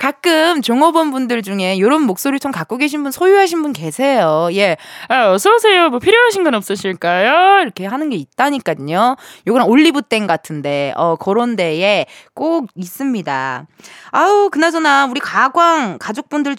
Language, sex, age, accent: Korean, female, 20-39, native